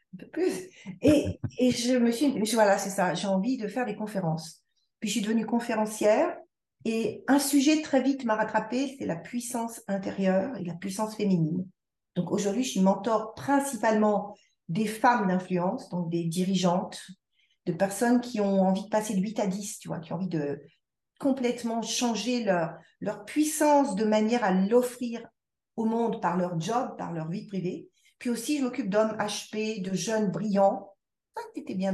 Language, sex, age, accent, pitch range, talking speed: French, female, 40-59, French, 190-245 Hz, 180 wpm